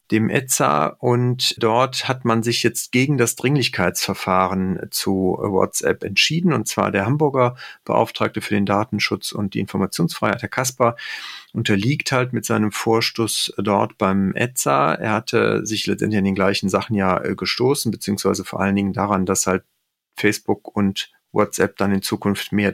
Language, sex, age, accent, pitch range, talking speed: German, male, 40-59, German, 100-120 Hz, 155 wpm